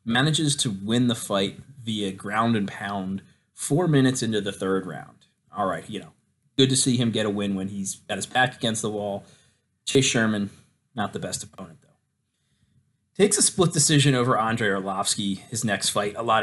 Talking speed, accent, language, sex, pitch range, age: 195 wpm, American, English, male, 100-130 Hz, 30-49